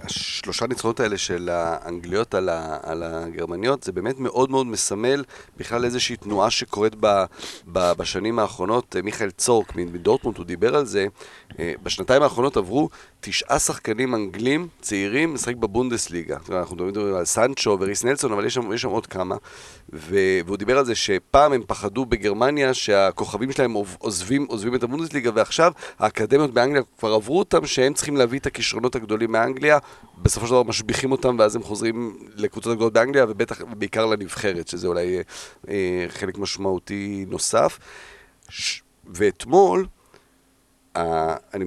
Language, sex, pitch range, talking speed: Hebrew, male, 100-130 Hz, 140 wpm